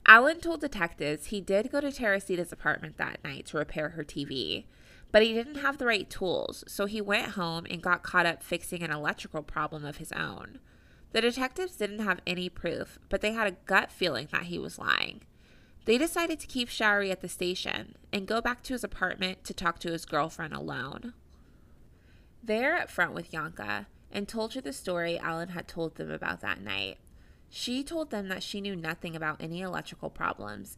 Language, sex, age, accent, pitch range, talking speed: English, female, 20-39, American, 155-215 Hz, 195 wpm